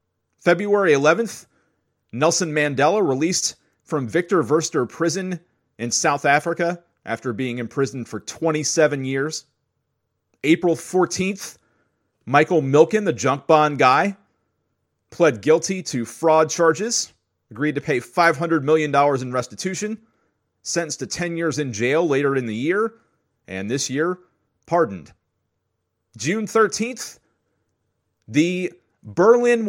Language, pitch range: English, 115-170 Hz